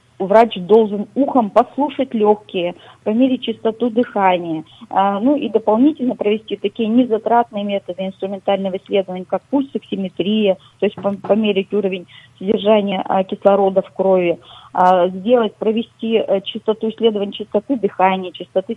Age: 20-39